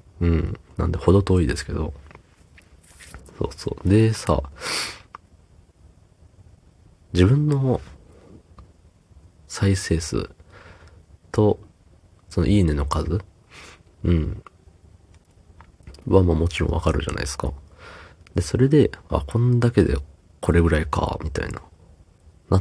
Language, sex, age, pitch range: Japanese, male, 40-59, 80-95 Hz